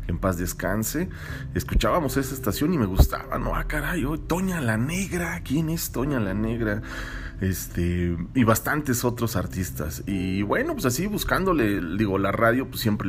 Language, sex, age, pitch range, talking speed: Spanish, male, 40-59, 95-120 Hz, 165 wpm